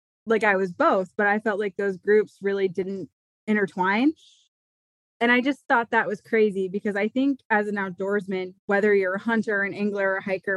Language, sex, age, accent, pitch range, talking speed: English, female, 20-39, American, 185-220 Hz, 195 wpm